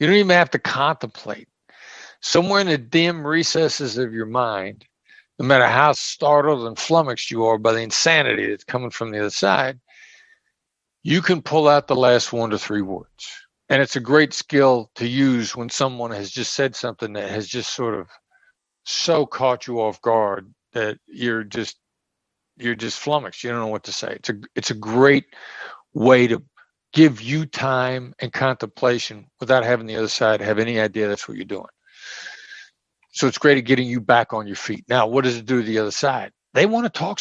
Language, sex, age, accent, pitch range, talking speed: English, male, 60-79, American, 115-155 Hz, 200 wpm